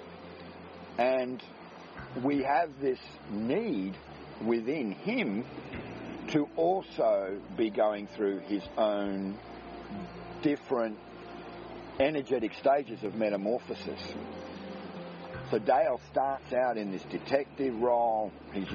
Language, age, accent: English, 50-69, Australian